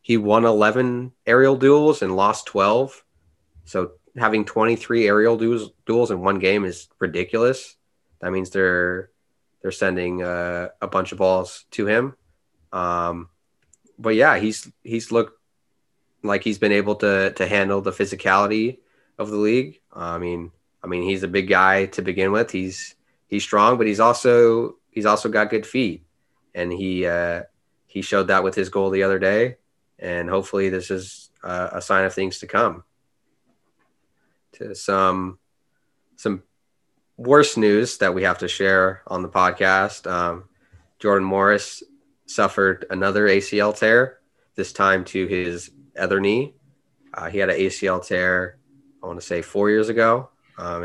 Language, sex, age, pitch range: English, male, 20-39, 90-105 Hz